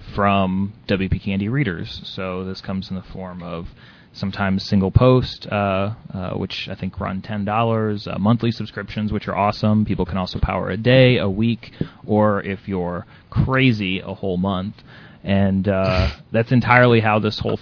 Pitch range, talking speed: 95-115 Hz, 165 wpm